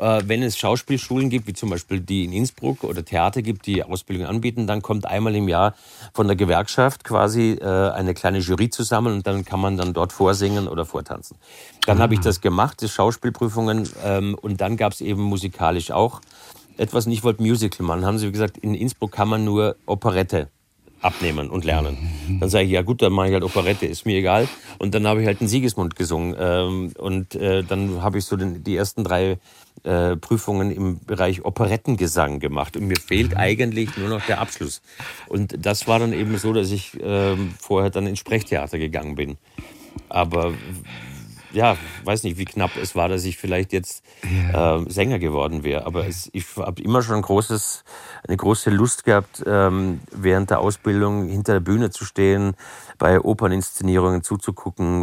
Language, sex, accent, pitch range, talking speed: German, male, German, 90-110 Hz, 180 wpm